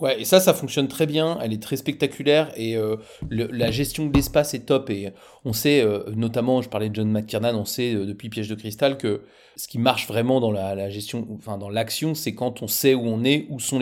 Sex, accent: male, French